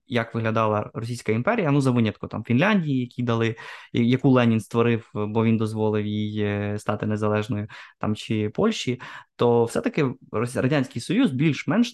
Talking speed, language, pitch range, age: 140 wpm, Ukrainian, 110-135 Hz, 20-39